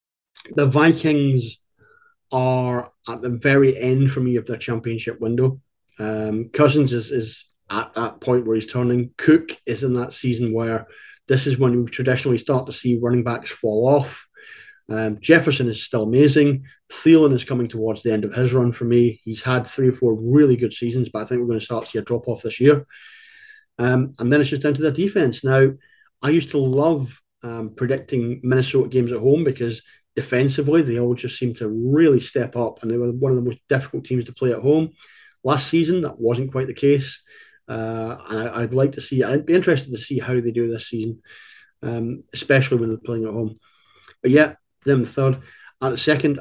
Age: 30-49